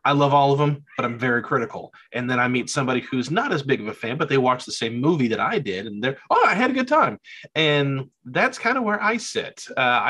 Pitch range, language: 120-150 Hz, English